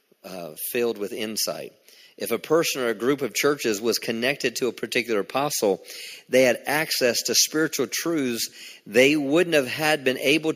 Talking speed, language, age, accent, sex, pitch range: 170 wpm, English, 40-59, American, male, 115-145 Hz